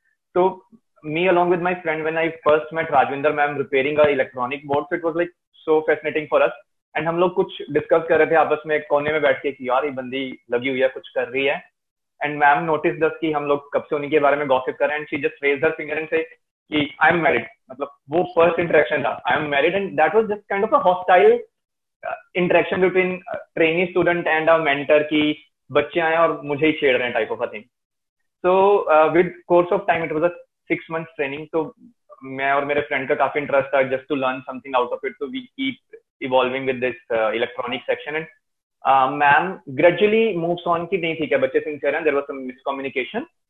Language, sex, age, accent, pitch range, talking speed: English, male, 20-39, Indian, 140-180 Hz, 185 wpm